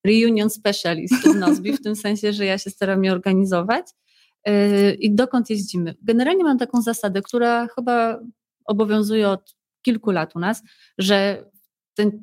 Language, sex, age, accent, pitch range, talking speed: Polish, female, 30-49, native, 180-215 Hz, 145 wpm